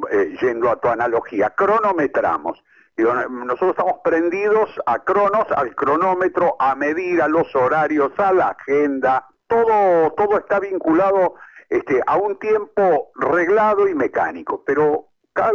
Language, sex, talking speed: Spanish, male, 125 wpm